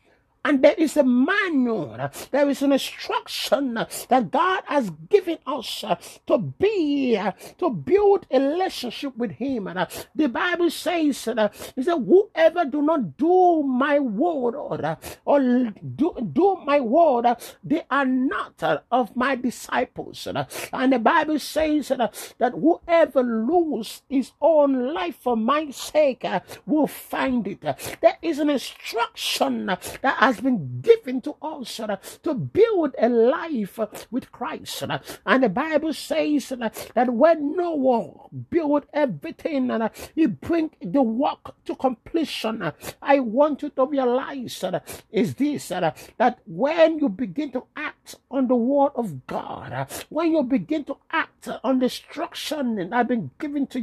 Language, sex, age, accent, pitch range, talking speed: English, male, 50-69, Nigerian, 240-315 Hz, 145 wpm